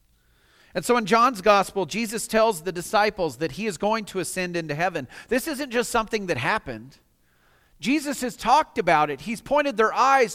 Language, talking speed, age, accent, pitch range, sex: English, 185 wpm, 40-59, American, 175-240 Hz, male